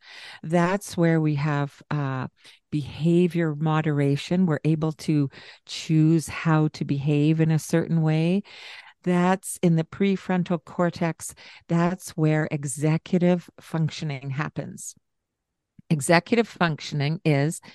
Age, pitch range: 50-69, 150-185 Hz